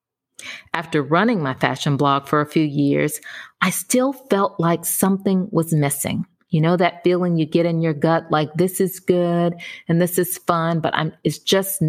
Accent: American